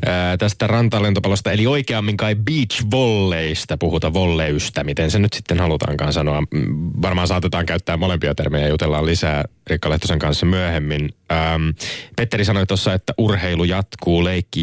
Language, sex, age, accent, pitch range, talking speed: Finnish, male, 20-39, native, 80-100 Hz, 130 wpm